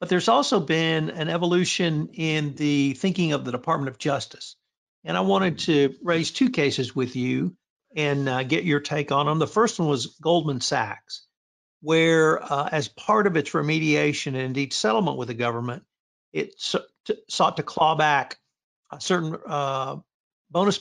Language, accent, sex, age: English, American, male, 50-69